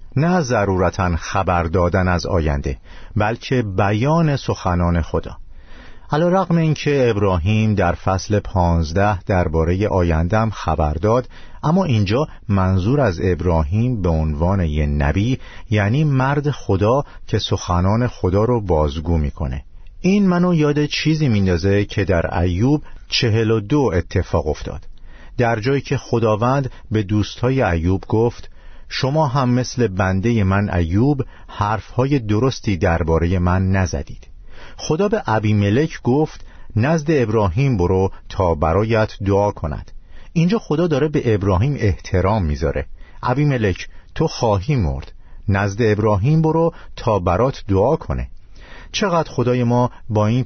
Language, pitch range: Persian, 90-125 Hz